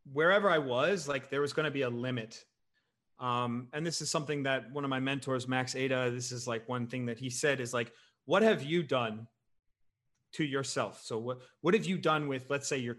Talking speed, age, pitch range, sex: 225 wpm, 30-49, 125-155 Hz, male